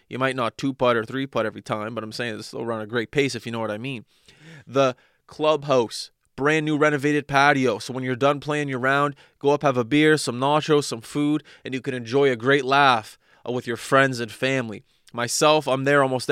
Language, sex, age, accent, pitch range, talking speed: English, male, 20-39, American, 115-135 Hz, 220 wpm